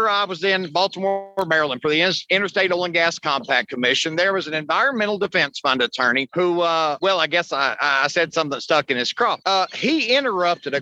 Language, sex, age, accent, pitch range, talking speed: English, male, 50-69, American, 160-215 Hz, 205 wpm